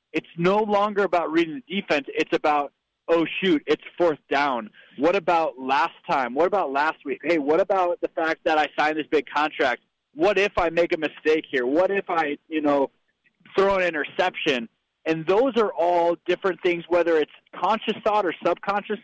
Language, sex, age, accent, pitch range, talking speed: English, male, 20-39, American, 155-195 Hz, 190 wpm